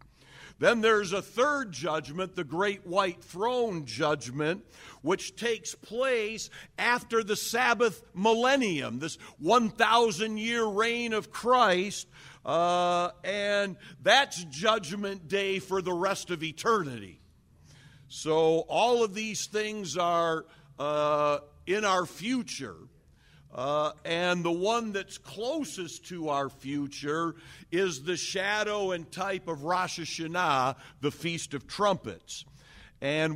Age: 50-69